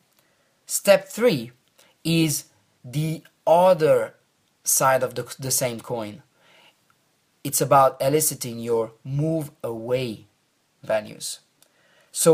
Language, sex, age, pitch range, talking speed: English, male, 30-49, 130-160 Hz, 90 wpm